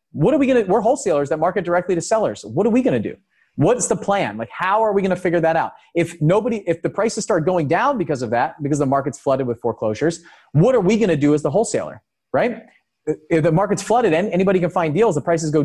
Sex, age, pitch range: male, 30-49, 130-180 Hz